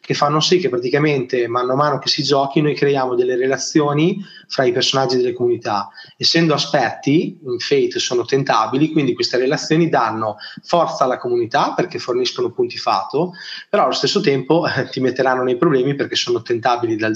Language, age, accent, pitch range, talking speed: Italian, 20-39, native, 125-155 Hz, 175 wpm